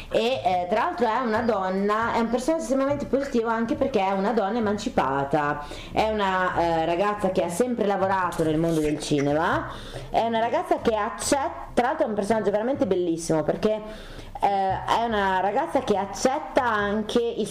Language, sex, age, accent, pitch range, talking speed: Italian, female, 30-49, native, 170-225 Hz, 175 wpm